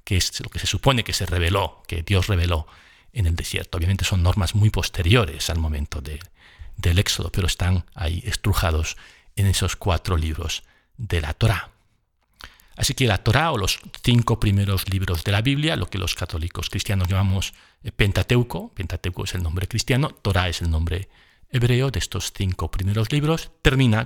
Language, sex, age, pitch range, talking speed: Spanish, male, 40-59, 90-115 Hz, 175 wpm